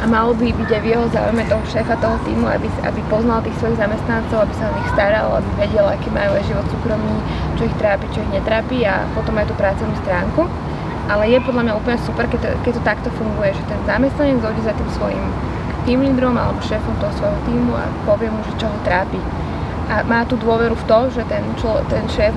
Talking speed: 225 wpm